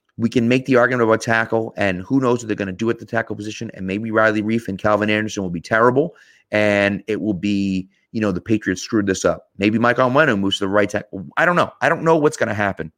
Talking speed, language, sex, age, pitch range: 270 wpm, English, male, 30-49, 95-125 Hz